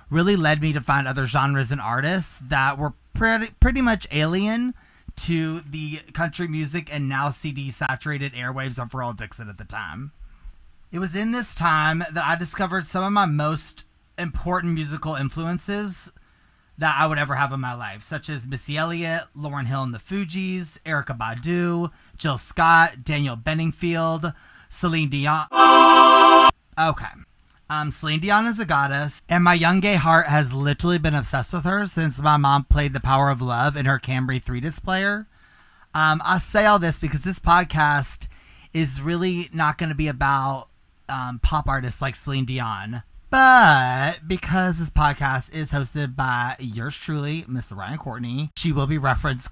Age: 30-49